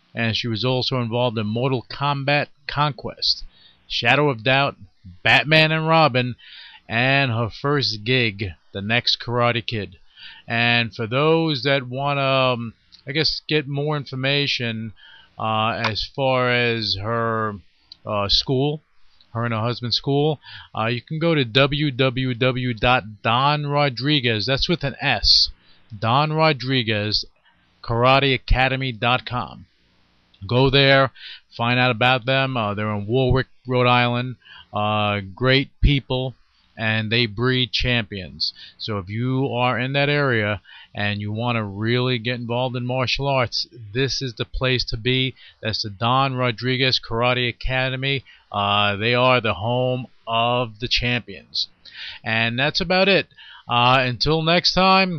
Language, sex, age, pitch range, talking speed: English, male, 40-59, 115-135 Hz, 130 wpm